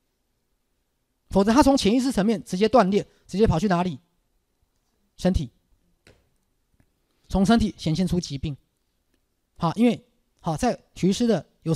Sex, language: male, Chinese